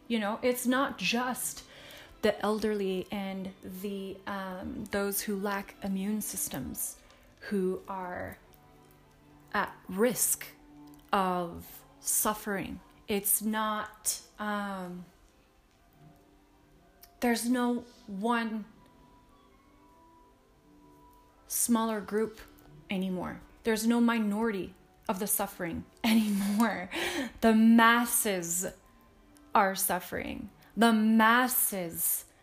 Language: English